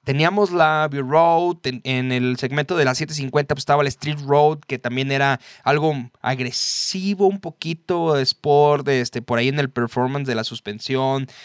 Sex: male